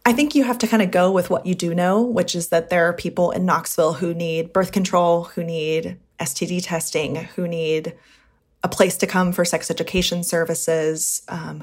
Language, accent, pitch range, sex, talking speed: English, American, 165-190 Hz, female, 205 wpm